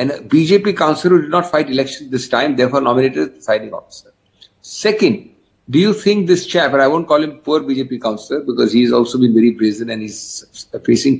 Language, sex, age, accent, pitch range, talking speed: English, male, 60-79, Indian, 120-195 Hz, 210 wpm